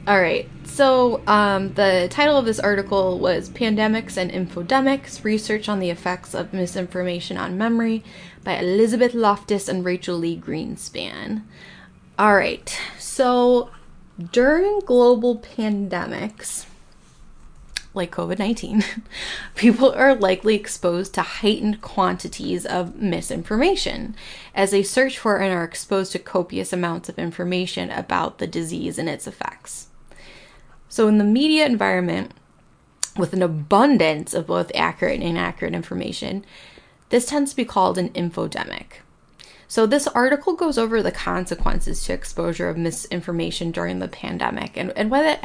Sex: female